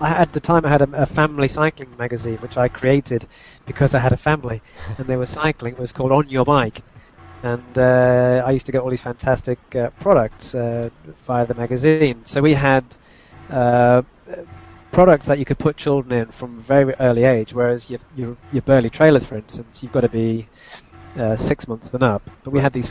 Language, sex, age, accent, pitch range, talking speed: English, male, 30-49, British, 115-135 Hz, 210 wpm